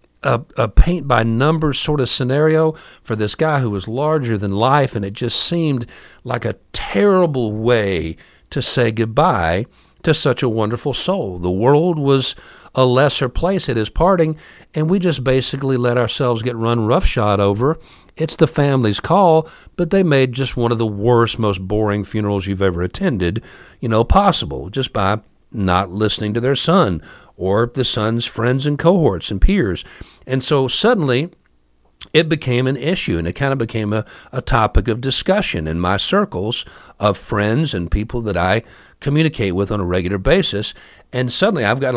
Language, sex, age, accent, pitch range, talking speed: English, male, 50-69, American, 105-150 Hz, 175 wpm